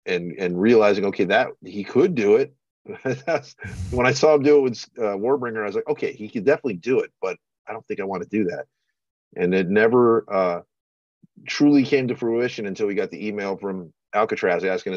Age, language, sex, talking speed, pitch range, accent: 40-59, English, male, 210 wpm, 95-155 Hz, American